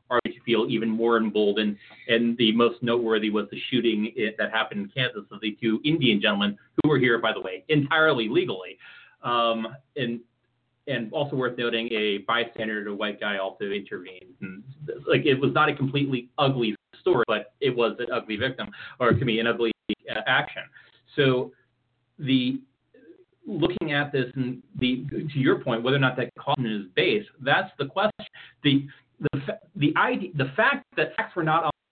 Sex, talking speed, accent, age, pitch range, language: male, 185 wpm, American, 30-49, 120-160 Hz, English